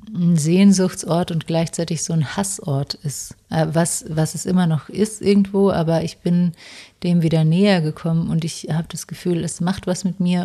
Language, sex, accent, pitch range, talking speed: German, female, German, 100-165 Hz, 185 wpm